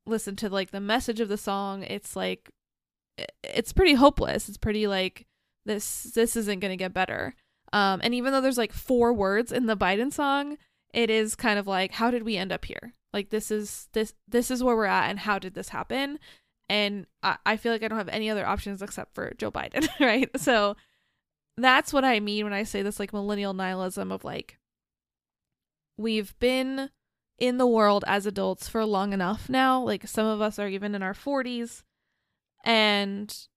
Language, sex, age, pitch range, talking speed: English, female, 20-39, 200-235 Hz, 195 wpm